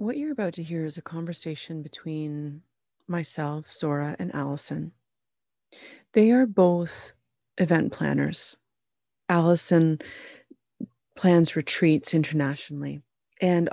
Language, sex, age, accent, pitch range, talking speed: English, female, 30-49, American, 155-180 Hz, 100 wpm